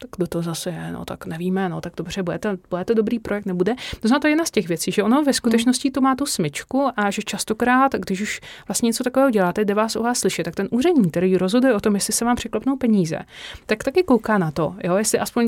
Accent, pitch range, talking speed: native, 190-235 Hz, 255 wpm